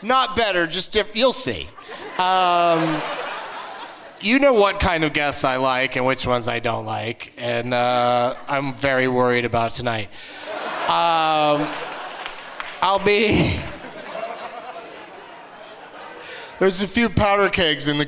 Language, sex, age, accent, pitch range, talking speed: English, male, 30-49, American, 125-150 Hz, 125 wpm